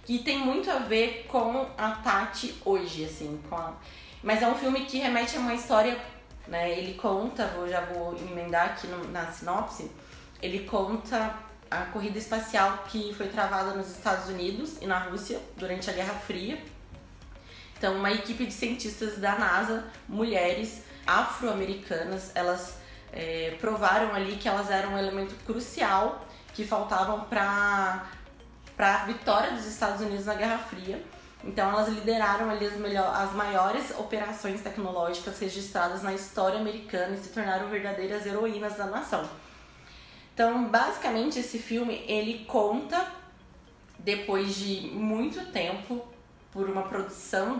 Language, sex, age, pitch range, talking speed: Portuguese, female, 20-39, 190-230 Hz, 140 wpm